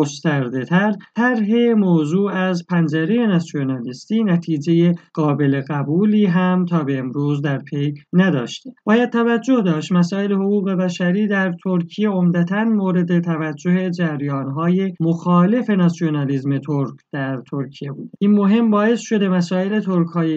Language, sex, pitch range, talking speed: Persian, male, 165-210 Hz, 125 wpm